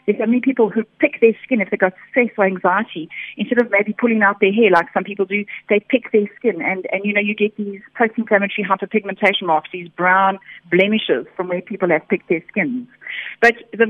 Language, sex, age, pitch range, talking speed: English, female, 30-49, 180-215 Hz, 220 wpm